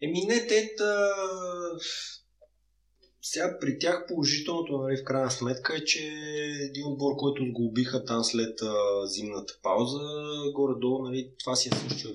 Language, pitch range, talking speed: Bulgarian, 105-145 Hz, 125 wpm